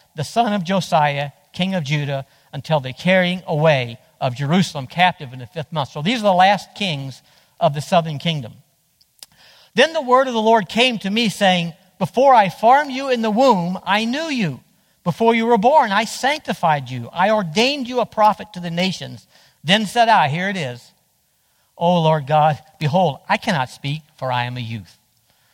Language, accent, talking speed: English, American, 190 wpm